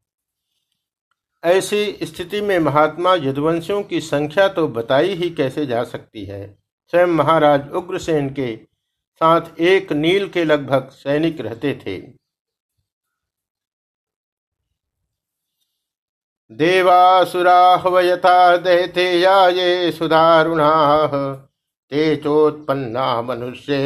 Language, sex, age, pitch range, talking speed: Hindi, male, 50-69, 135-175 Hz, 85 wpm